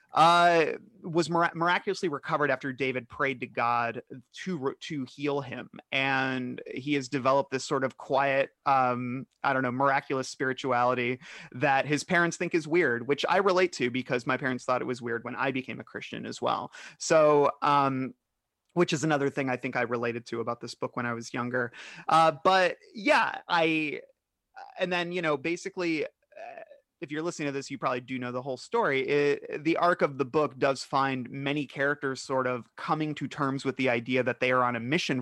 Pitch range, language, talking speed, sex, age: 125-165 Hz, English, 200 wpm, male, 30-49